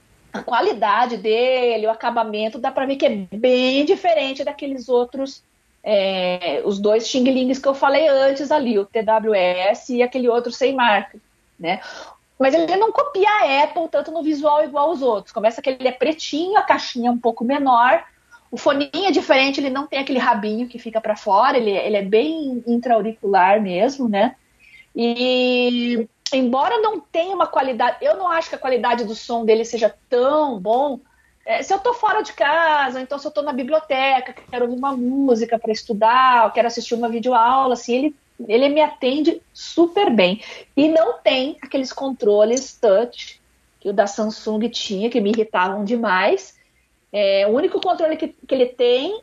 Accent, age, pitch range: Brazilian, 40-59, 230-290 Hz